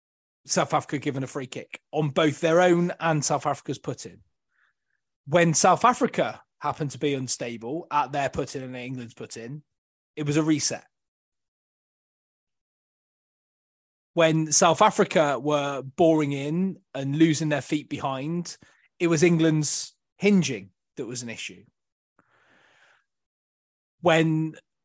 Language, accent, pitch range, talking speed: English, British, 145-195 Hz, 125 wpm